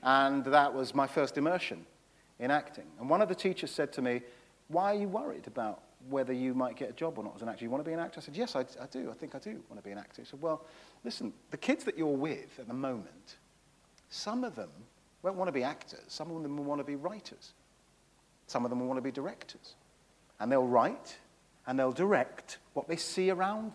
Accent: British